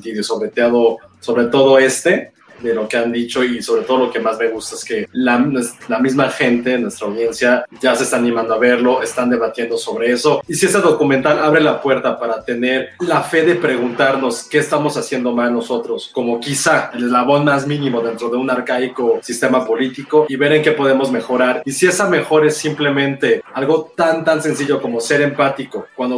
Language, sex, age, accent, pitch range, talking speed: Spanish, male, 30-49, Mexican, 120-150 Hz, 200 wpm